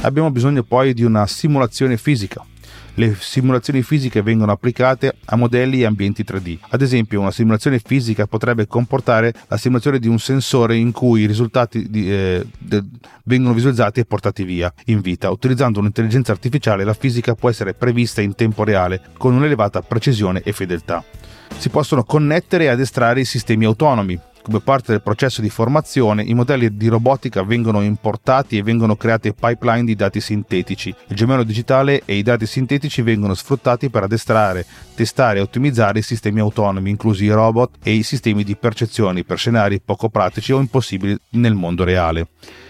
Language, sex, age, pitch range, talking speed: Italian, male, 30-49, 105-125 Hz, 165 wpm